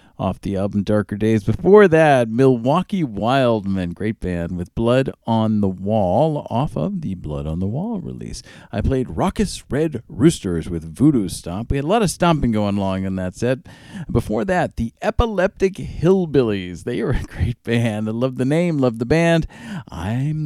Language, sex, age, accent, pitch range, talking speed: English, male, 50-69, American, 90-130 Hz, 180 wpm